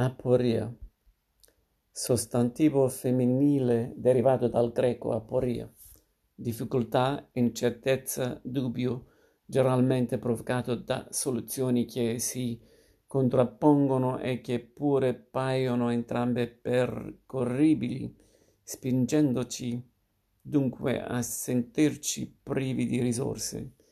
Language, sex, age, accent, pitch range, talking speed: Italian, male, 50-69, native, 120-135 Hz, 75 wpm